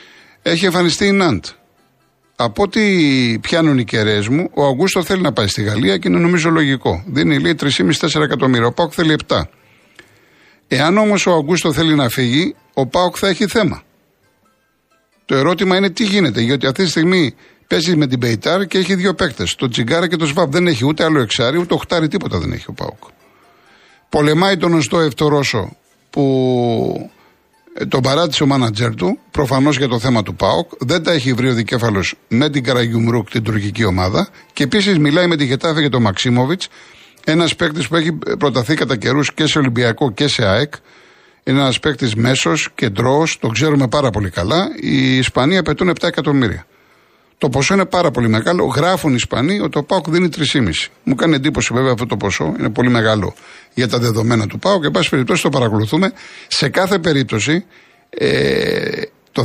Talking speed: 180 wpm